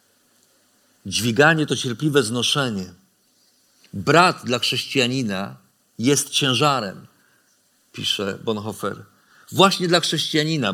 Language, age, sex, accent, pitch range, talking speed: Polish, 50-69, male, native, 115-170 Hz, 80 wpm